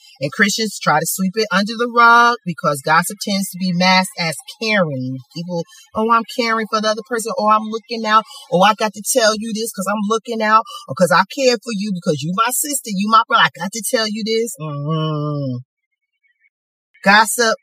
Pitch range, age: 170-225 Hz, 40-59